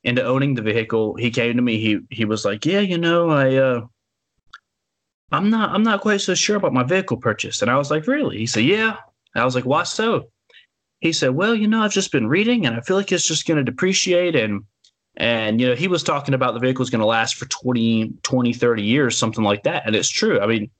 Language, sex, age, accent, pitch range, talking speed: English, male, 20-39, American, 105-135 Hz, 250 wpm